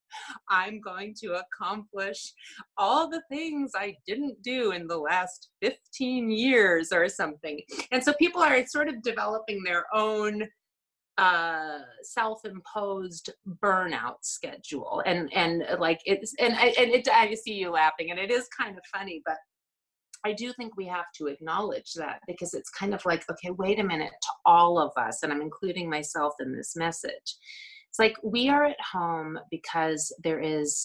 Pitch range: 160-235 Hz